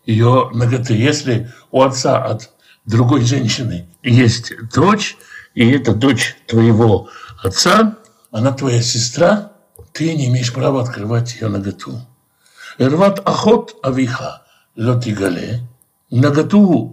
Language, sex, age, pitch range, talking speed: Russian, male, 60-79, 120-155 Hz, 90 wpm